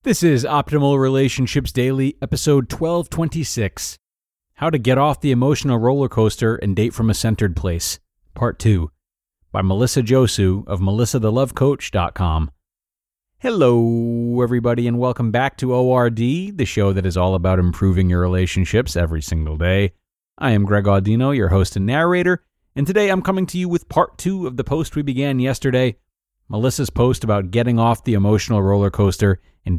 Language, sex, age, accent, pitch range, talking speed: English, male, 30-49, American, 95-130 Hz, 160 wpm